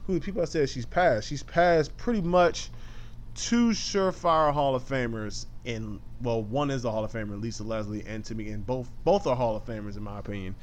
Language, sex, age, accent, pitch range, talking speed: English, male, 20-39, American, 110-130 Hz, 210 wpm